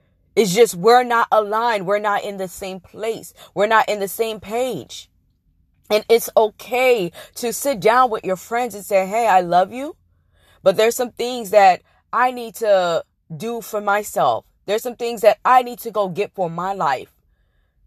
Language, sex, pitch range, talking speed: English, female, 165-225 Hz, 185 wpm